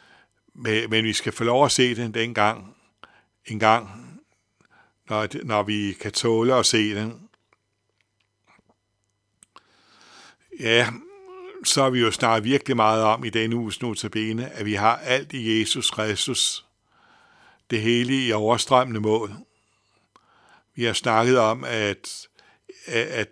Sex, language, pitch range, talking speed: male, Danish, 105-120 Hz, 120 wpm